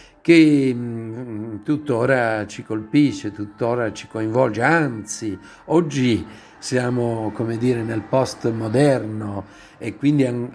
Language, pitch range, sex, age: Italian, 110-135 Hz, male, 50-69